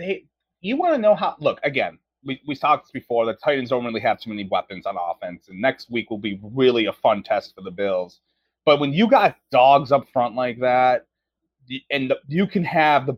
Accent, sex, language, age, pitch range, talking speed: American, male, English, 30-49, 125-170 Hz, 225 wpm